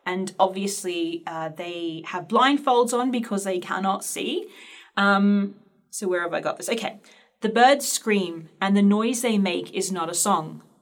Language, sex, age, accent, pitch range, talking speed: English, female, 30-49, Australian, 175-210 Hz, 170 wpm